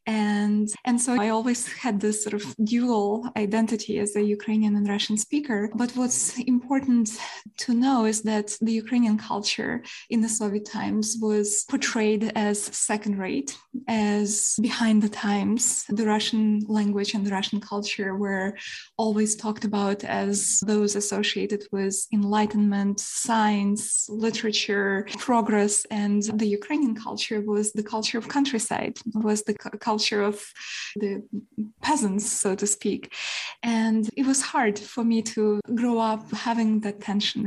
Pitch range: 205-225 Hz